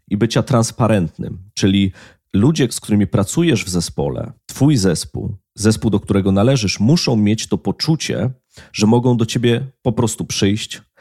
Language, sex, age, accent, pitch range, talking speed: Polish, male, 30-49, native, 100-120 Hz, 145 wpm